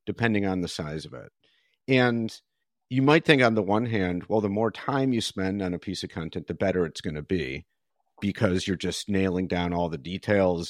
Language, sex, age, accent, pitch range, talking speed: English, male, 50-69, American, 95-115 Hz, 220 wpm